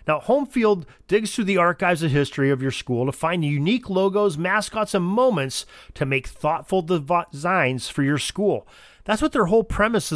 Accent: American